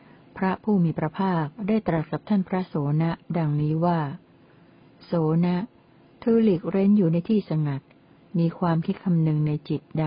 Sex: female